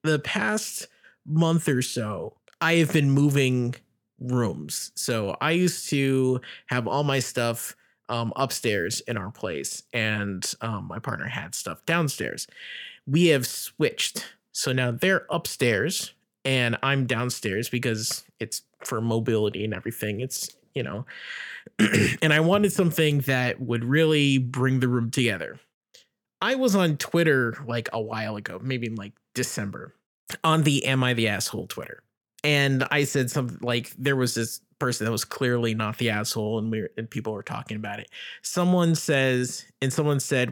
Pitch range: 115-150 Hz